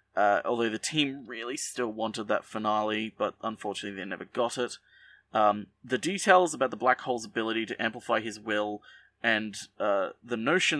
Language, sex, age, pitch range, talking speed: English, male, 30-49, 110-150 Hz, 170 wpm